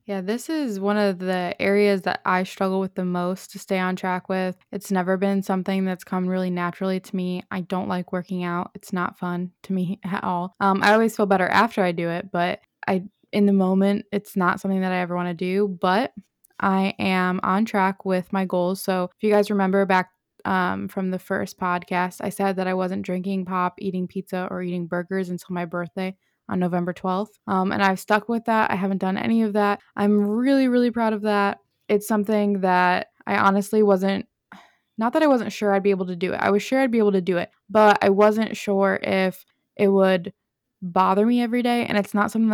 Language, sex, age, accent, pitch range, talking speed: English, female, 20-39, American, 185-205 Hz, 225 wpm